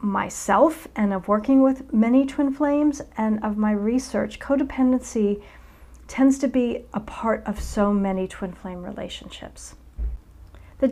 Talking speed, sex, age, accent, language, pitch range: 135 wpm, female, 40-59, American, English, 200-245 Hz